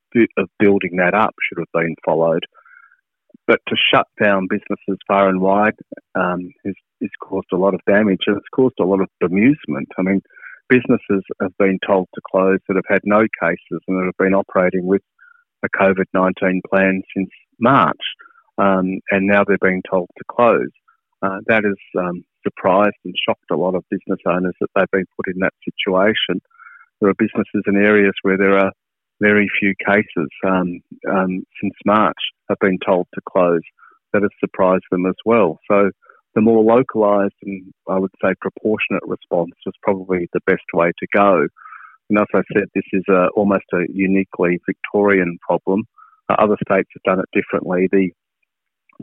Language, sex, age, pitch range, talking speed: English, male, 30-49, 95-100 Hz, 175 wpm